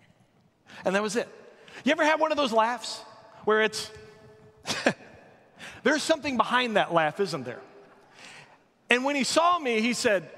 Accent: American